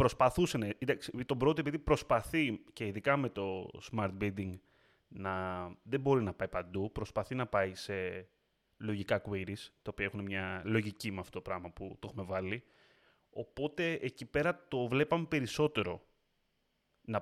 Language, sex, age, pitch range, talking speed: Greek, male, 30-49, 100-130 Hz, 150 wpm